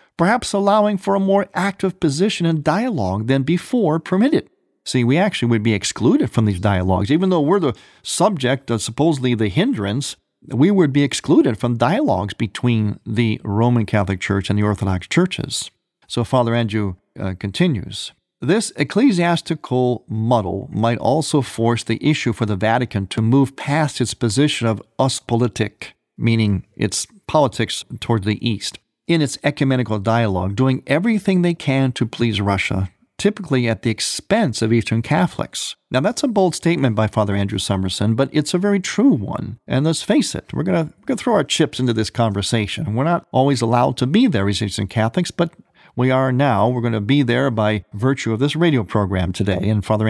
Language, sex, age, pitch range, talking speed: English, male, 50-69, 110-155 Hz, 175 wpm